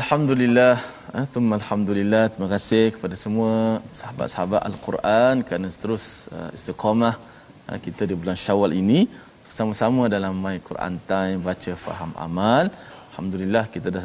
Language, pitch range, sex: Malayalam, 90-115 Hz, male